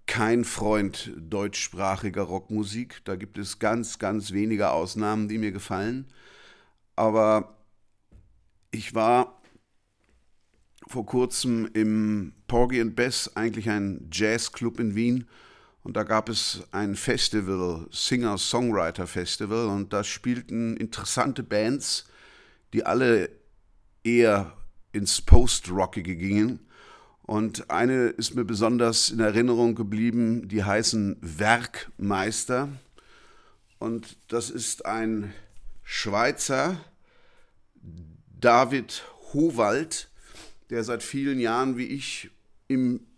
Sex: male